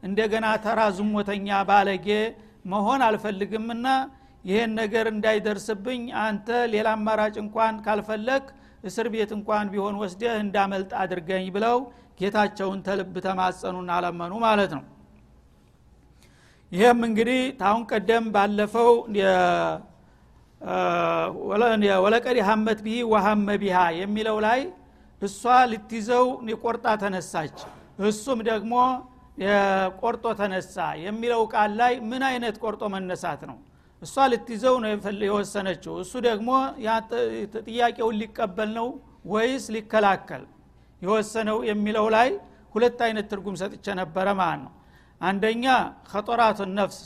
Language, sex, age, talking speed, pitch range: Amharic, male, 60-79, 100 wpm, 200-230 Hz